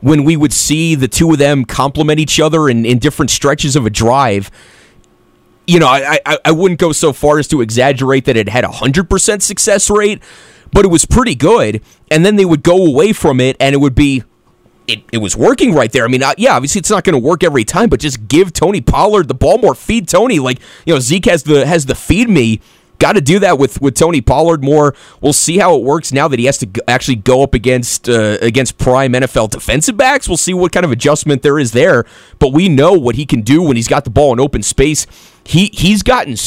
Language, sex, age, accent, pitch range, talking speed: English, male, 30-49, American, 125-165 Hz, 245 wpm